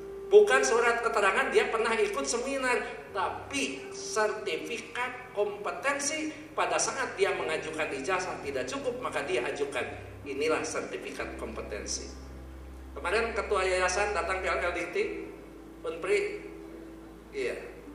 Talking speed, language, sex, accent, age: 105 wpm, Indonesian, male, native, 50-69